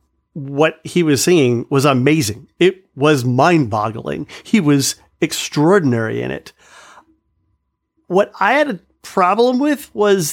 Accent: American